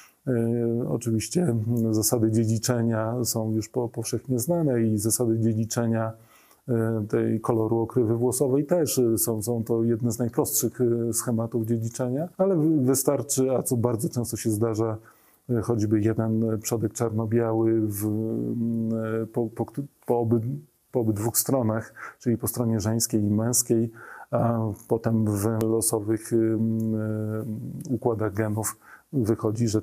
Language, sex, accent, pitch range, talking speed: Polish, male, native, 110-120 Hz, 110 wpm